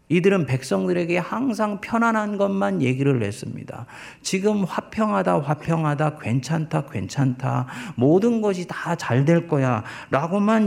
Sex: male